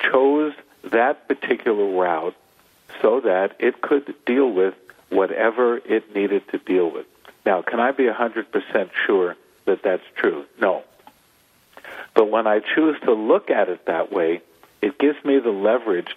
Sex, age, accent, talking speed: male, 50-69, American, 150 wpm